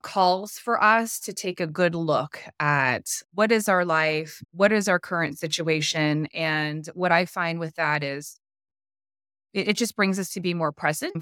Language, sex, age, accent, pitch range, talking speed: English, female, 20-39, American, 150-185 Hz, 175 wpm